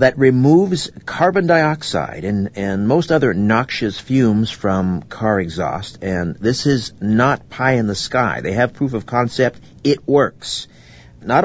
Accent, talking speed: American, 150 wpm